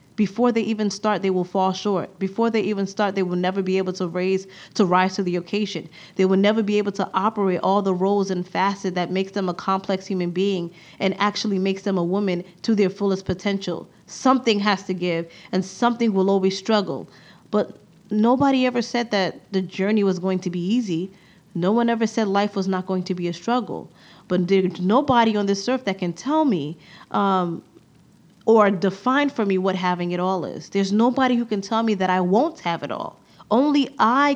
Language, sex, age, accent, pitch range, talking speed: English, female, 20-39, American, 185-225 Hz, 210 wpm